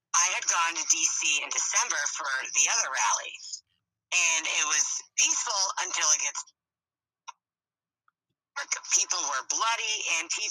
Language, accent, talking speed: English, American, 125 wpm